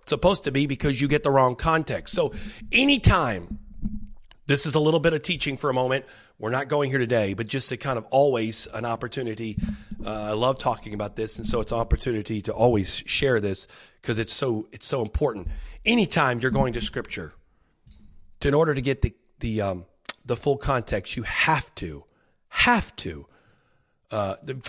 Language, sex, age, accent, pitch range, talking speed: English, male, 40-59, American, 115-165 Hz, 185 wpm